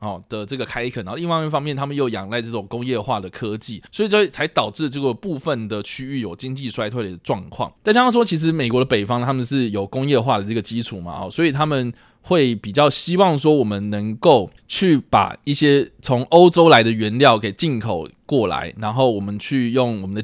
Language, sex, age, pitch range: Chinese, male, 20-39, 115-155 Hz